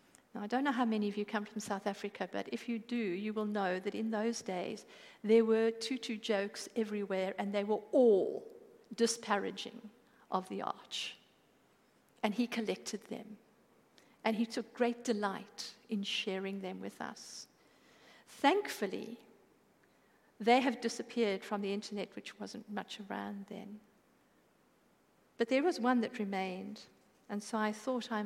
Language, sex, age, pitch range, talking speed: English, female, 50-69, 205-245 Hz, 155 wpm